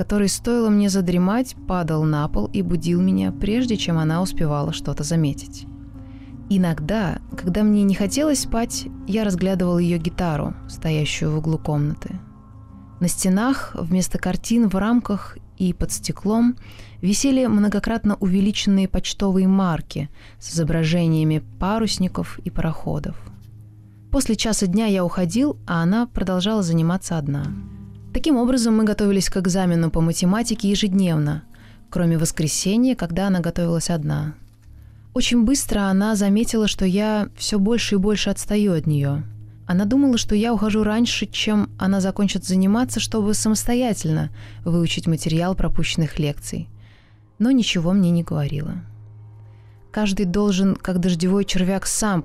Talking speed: 130 wpm